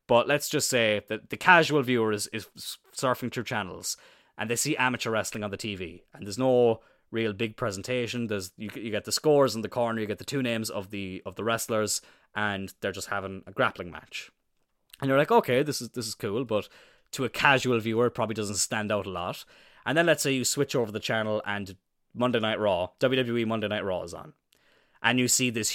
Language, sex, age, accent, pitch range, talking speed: English, male, 20-39, Irish, 105-130 Hz, 225 wpm